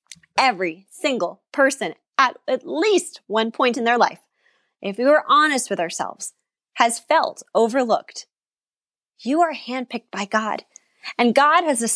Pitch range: 215-290 Hz